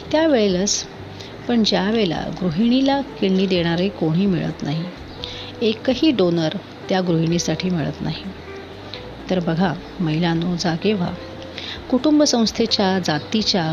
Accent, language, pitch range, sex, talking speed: native, Marathi, 165-210 Hz, female, 110 wpm